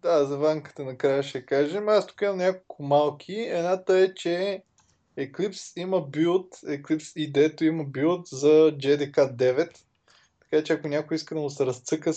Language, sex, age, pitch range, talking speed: Bulgarian, male, 20-39, 135-160 Hz, 160 wpm